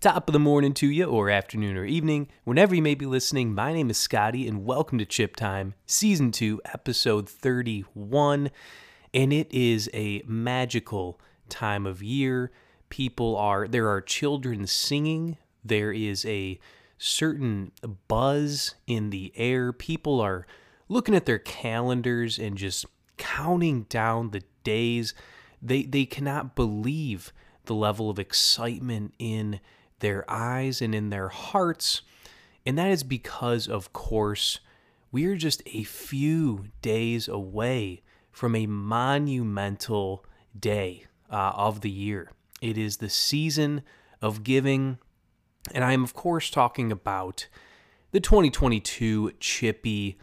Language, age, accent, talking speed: English, 20-39, American, 135 wpm